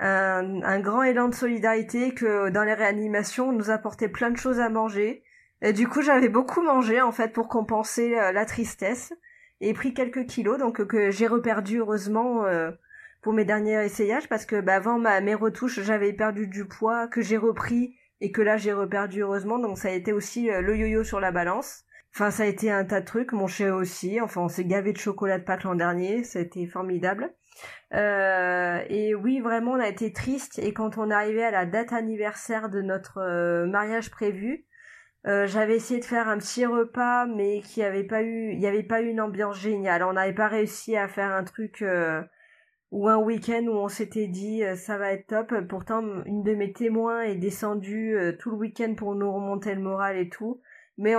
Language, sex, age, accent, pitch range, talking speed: French, female, 20-39, French, 200-230 Hz, 210 wpm